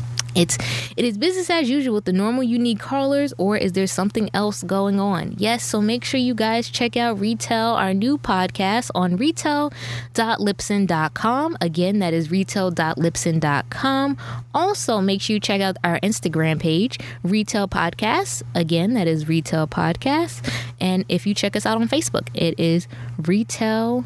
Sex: female